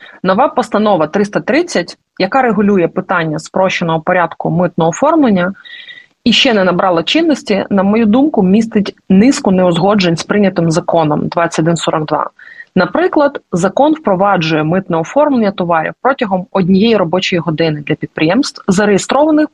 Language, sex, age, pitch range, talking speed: Ukrainian, female, 30-49, 180-250 Hz, 115 wpm